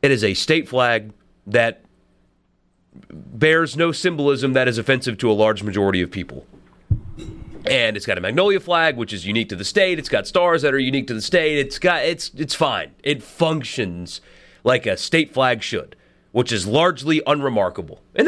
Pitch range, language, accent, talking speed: 105-140 Hz, English, American, 185 wpm